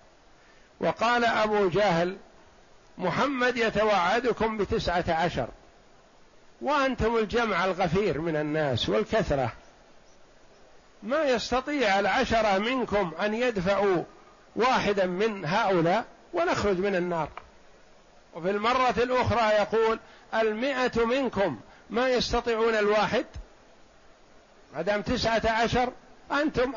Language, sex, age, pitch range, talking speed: Arabic, male, 50-69, 185-230 Hz, 85 wpm